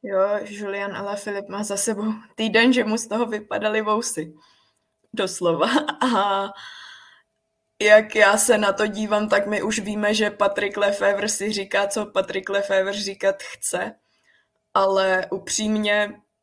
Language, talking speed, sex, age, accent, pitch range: Czech, 135 wpm, female, 20-39, native, 195-210 Hz